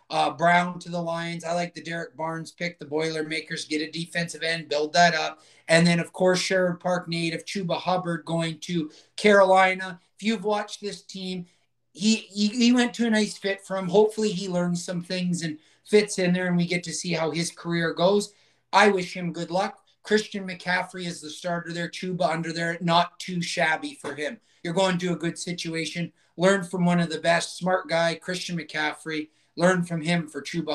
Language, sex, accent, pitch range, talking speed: English, male, American, 160-185 Hz, 205 wpm